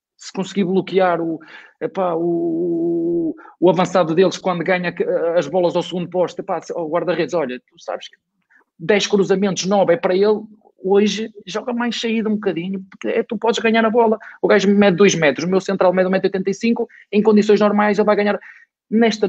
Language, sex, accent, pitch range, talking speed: Portuguese, male, Portuguese, 180-225 Hz, 185 wpm